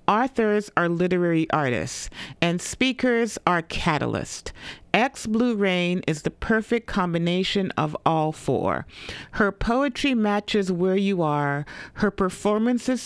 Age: 40-59